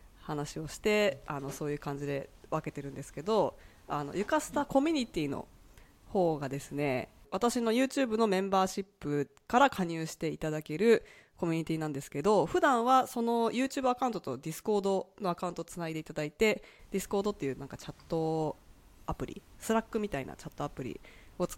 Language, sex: Japanese, female